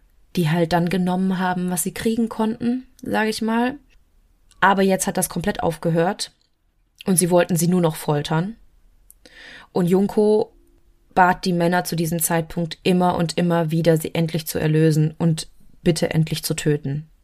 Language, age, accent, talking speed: German, 20-39, German, 160 wpm